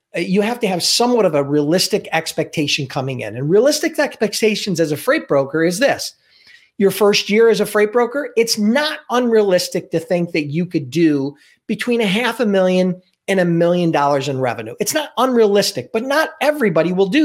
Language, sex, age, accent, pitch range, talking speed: English, male, 40-59, American, 150-215 Hz, 190 wpm